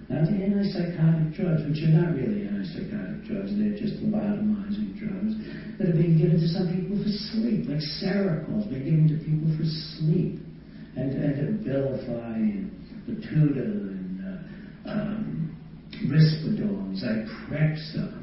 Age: 60-79